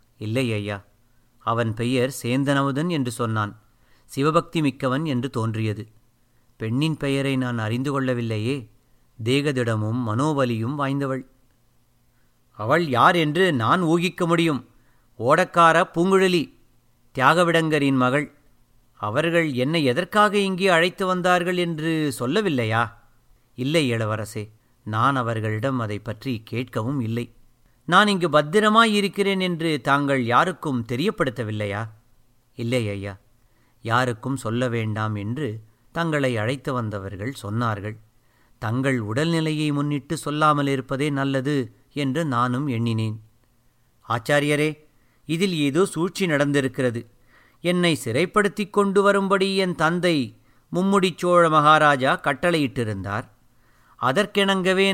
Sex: male